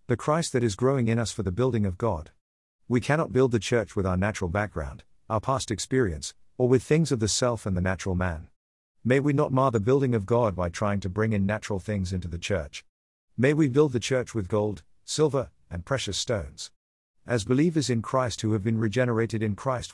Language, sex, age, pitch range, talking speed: English, male, 50-69, 95-120 Hz, 220 wpm